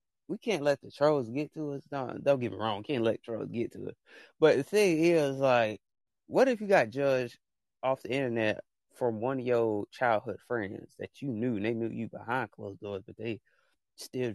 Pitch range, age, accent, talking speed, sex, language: 110-135 Hz, 20-39, American, 215 wpm, male, English